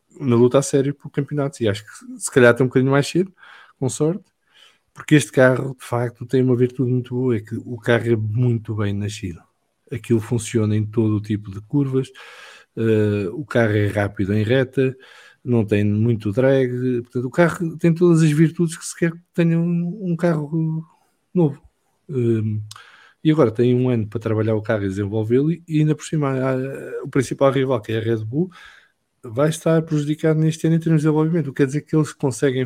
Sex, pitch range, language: male, 120-150 Hz, English